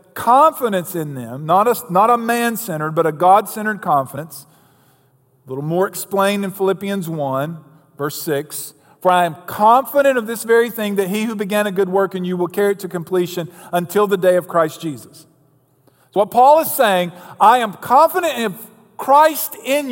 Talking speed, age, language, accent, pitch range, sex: 185 wpm, 50-69, English, American, 140-215 Hz, male